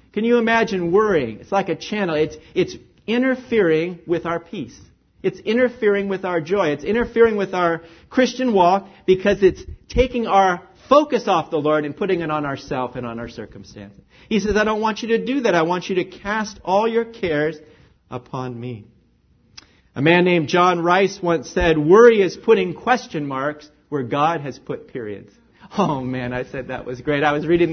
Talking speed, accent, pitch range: 190 wpm, American, 150-230 Hz